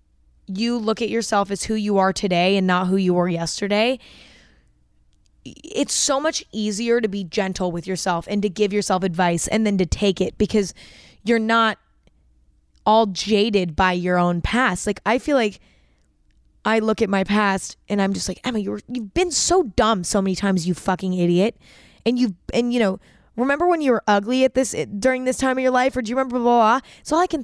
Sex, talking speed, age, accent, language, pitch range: female, 210 wpm, 20-39, American, English, 190-240 Hz